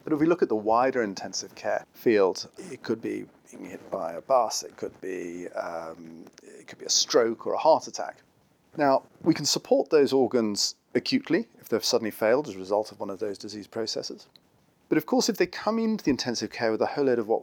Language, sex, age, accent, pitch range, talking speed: English, male, 40-59, British, 105-135 Hz, 230 wpm